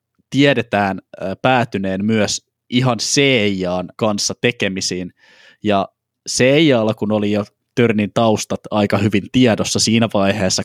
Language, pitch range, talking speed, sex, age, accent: Finnish, 100-120 Hz, 115 wpm, male, 20-39, native